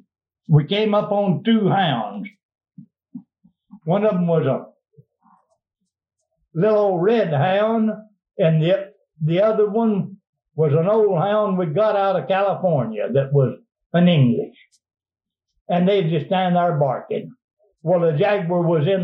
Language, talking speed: English, 135 wpm